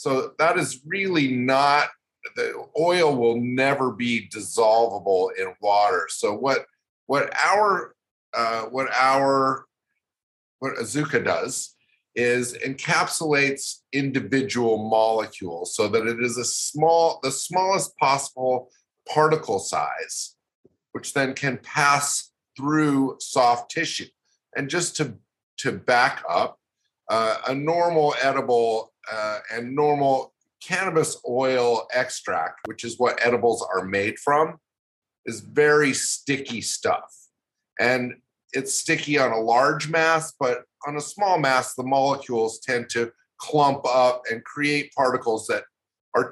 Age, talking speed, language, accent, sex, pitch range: 50-69, 125 wpm, English, American, male, 115-145 Hz